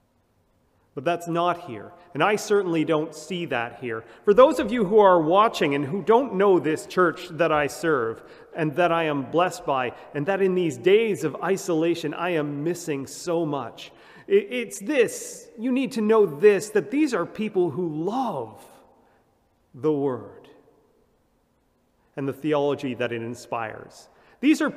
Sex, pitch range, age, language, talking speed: male, 145-215 Hz, 40-59, English, 165 wpm